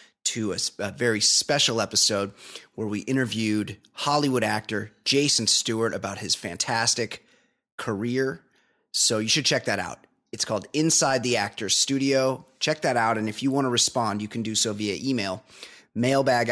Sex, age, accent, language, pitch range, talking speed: male, 30-49, American, English, 105-130 Hz, 165 wpm